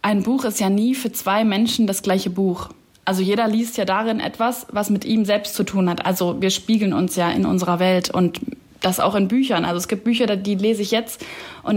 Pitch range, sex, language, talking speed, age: 190-230 Hz, female, German, 235 wpm, 20-39